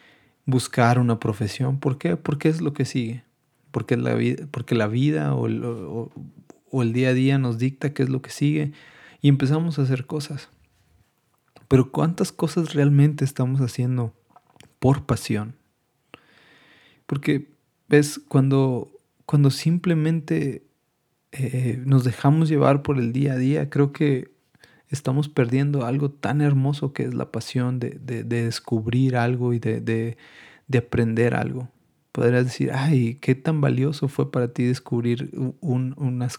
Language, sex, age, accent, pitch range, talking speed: Spanish, male, 30-49, Mexican, 120-145 Hz, 145 wpm